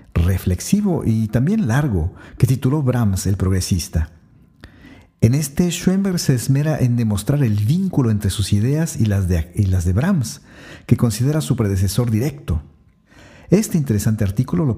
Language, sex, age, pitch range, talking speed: Spanish, male, 50-69, 95-130 Hz, 140 wpm